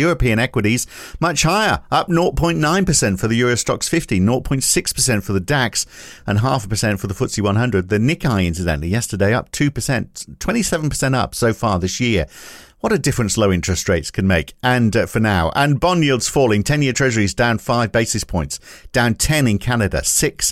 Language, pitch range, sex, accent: English, 100-130 Hz, male, British